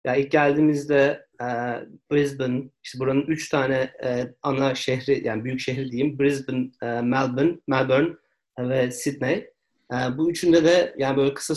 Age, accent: 40-59, native